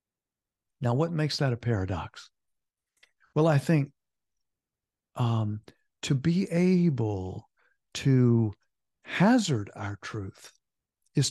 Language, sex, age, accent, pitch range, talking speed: English, male, 60-79, American, 115-160 Hz, 95 wpm